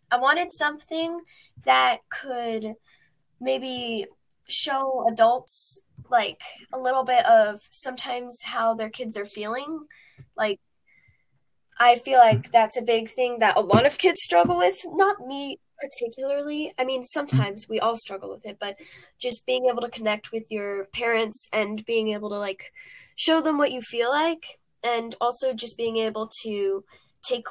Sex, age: female, 10-29